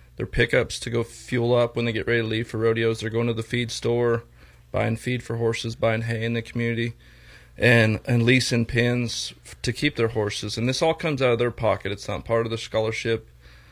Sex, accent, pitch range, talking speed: male, American, 110-125 Hz, 225 wpm